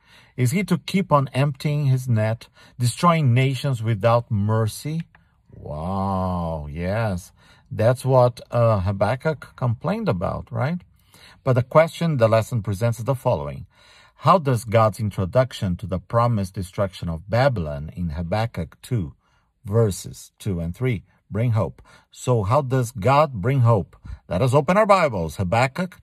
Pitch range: 95-130 Hz